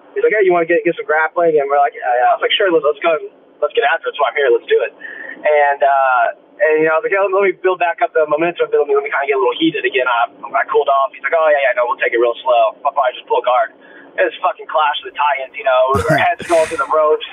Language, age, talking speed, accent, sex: English, 20-39, 335 wpm, American, male